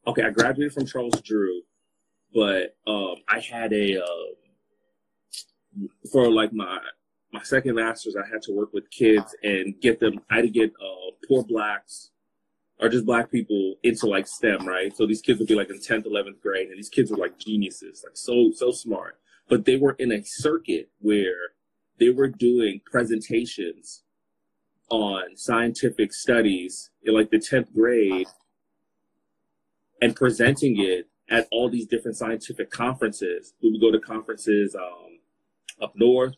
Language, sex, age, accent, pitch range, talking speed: English, male, 30-49, American, 105-130 Hz, 160 wpm